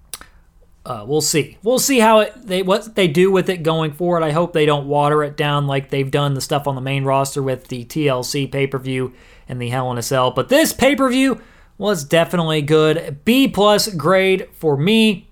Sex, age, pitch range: male, 30-49, 145-205 Hz